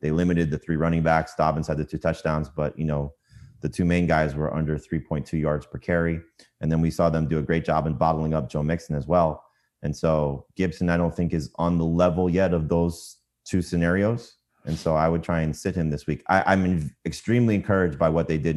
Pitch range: 80-90 Hz